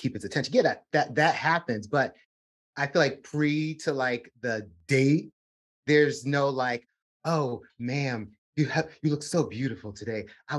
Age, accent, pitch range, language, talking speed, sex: 30-49, American, 110-145 Hz, English, 170 wpm, male